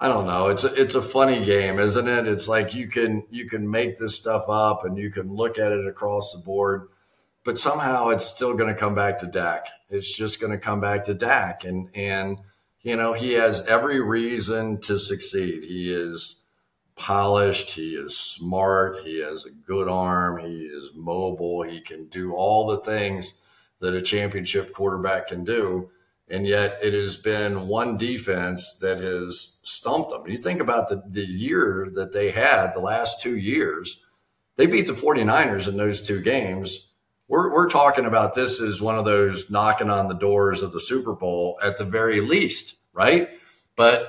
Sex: male